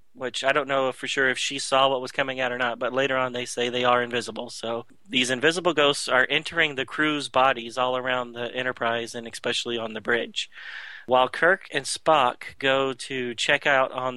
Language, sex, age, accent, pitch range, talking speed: English, male, 30-49, American, 120-145 Hz, 210 wpm